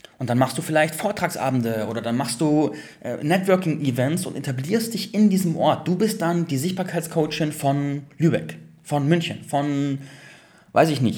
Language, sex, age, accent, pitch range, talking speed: German, male, 30-49, German, 135-185 Hz, 165 wpm